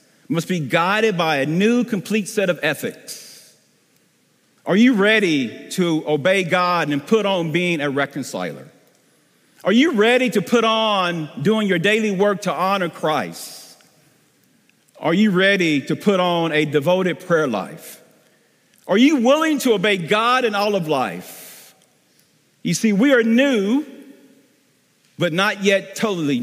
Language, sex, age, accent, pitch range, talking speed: English, male, 50-69, American, 165-230 Hz, 145 wpm